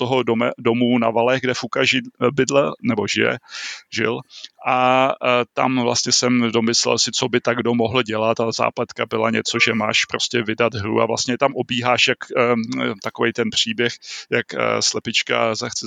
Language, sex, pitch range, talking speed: Czech, male, 120-140 Hz, 170 wpm